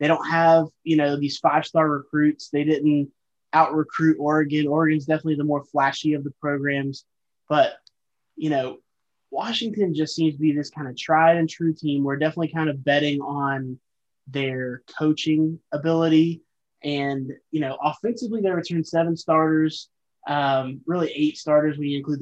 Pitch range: 140-155 Hz